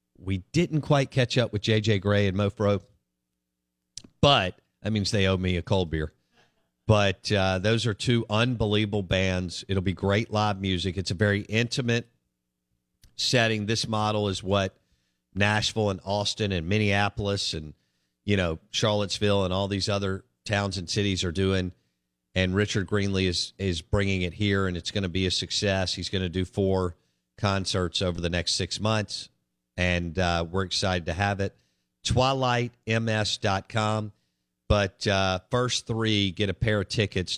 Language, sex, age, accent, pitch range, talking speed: English, male, 50-69, American, 90-110 Hz, 160 wpm